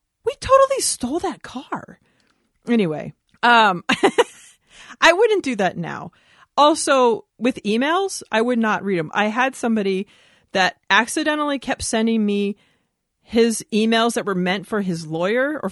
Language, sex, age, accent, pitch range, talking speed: English, female, 30-49, American, 185-240 Hz, 140 wpm